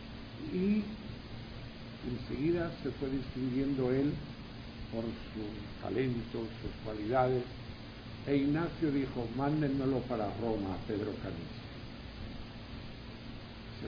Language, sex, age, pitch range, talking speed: English, male, 60-79, 115-130 Hz, 85 wpm